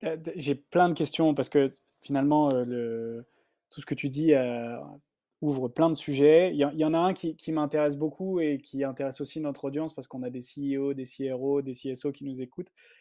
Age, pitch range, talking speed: 20-39, 130-155 Hz, 220 wpm